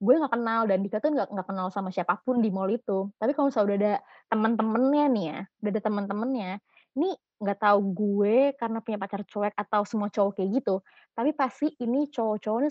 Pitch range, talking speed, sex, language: 200-255 Hz, 195 wpm, female, Indonesian